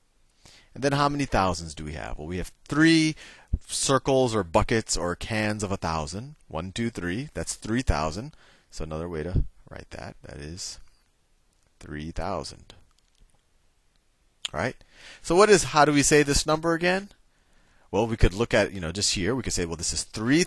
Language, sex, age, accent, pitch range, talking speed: English, male, 30-49, American, 80-115 Hz, 185 wpm